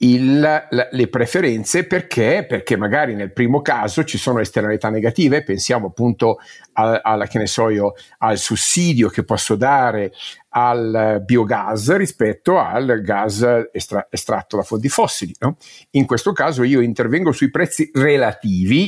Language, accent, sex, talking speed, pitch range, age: Italian, native, male, 120 wpm, 110-155 Hz, 50-69